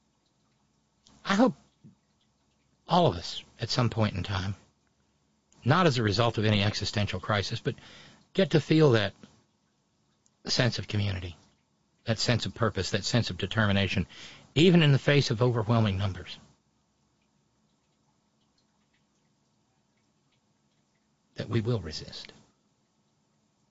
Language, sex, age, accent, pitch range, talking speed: English, male, 50-69, American, 75-120 Hz, 115 wpm